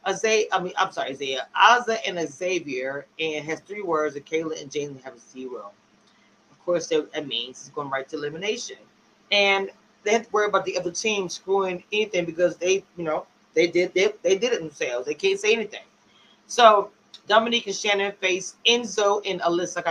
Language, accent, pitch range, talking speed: English, American, 170-225 Hz, 200 wpm